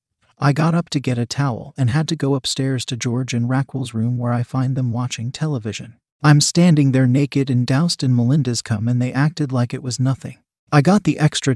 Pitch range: 120-150 Hz